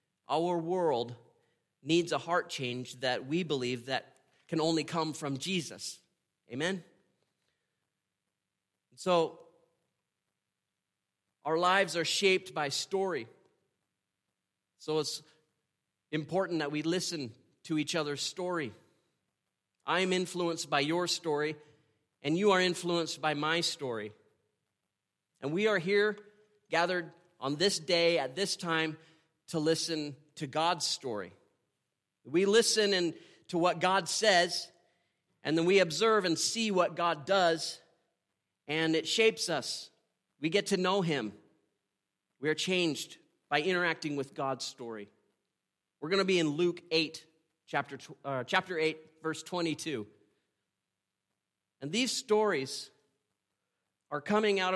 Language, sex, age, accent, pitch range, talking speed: English, male, 30-49, American, 150-180 Hz, 125 wpm